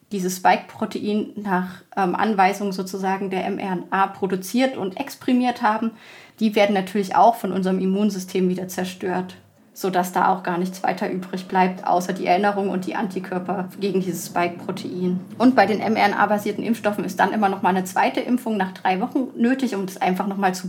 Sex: female